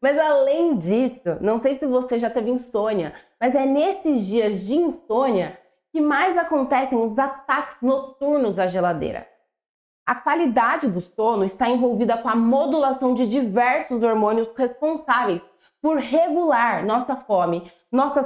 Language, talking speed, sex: Portuguese, 140 wpm, female